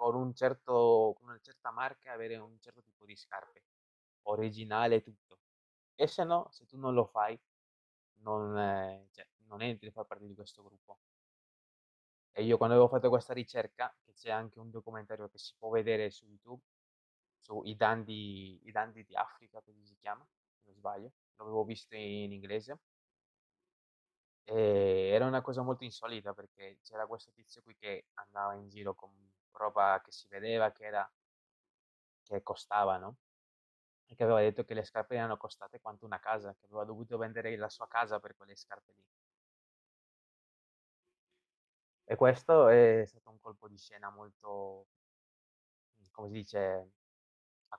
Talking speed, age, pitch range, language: 155 wpm, 20-39, 100-115 Hz, Italian